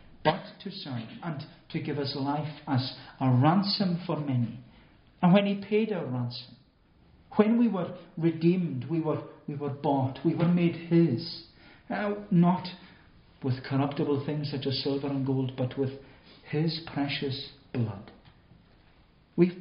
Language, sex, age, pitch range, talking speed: English, male, 50-69, 130-170 Hz, 145 wpm